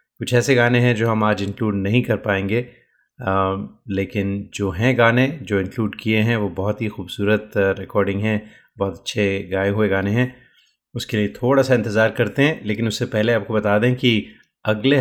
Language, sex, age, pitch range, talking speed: Hindi, male, 30-49, 100-120 Hz, 190 wpm